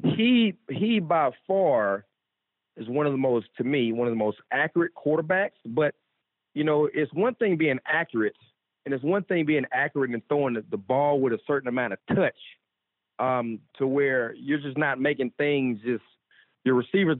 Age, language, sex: 40-59, English, male